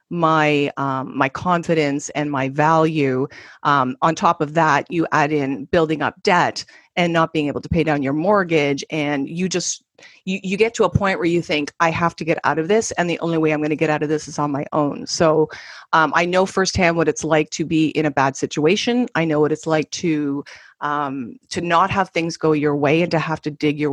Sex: female